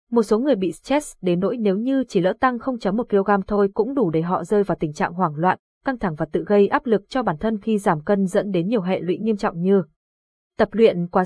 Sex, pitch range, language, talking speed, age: female, 190-235 Hz, Vietnamese, 265 wpm, 20-39